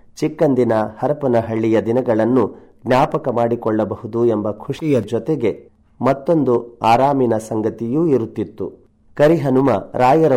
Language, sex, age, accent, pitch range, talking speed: Kannada, male, 30-49, native, 110-130 Hz, 80 wpm